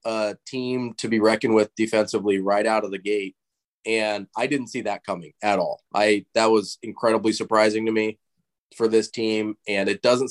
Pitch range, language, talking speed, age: 95-110 Hz, English, 190 wpm, 20-39